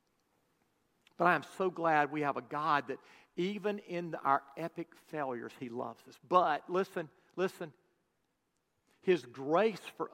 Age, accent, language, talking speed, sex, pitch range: 50-69, American, English, 140 wpm, male, 155-195 Hz